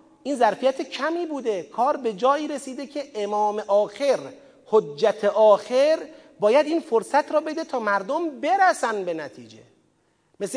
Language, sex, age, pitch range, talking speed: Persian, male, 40-59, 215-300 Hz, 135 wpm